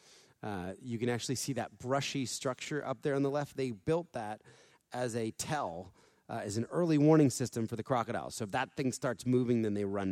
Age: 30-49